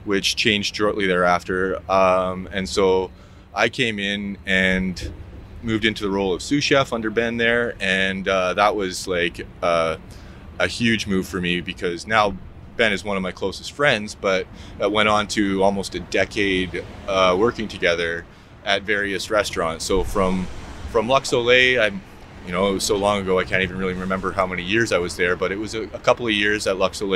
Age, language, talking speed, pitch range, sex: 20-39, English, 195 wpm, 95-105 Hz, male